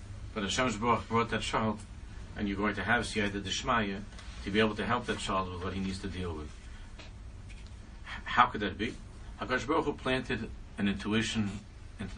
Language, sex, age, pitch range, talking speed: English, male, 60-79, 95-110 Hz, 170 wpm